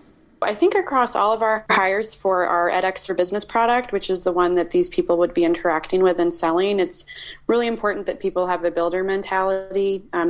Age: 20-39